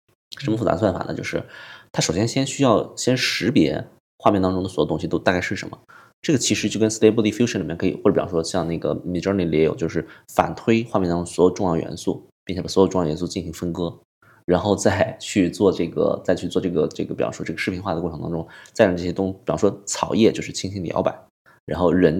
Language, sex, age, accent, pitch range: Chinese, male, 20-39, native, 85-110 Hz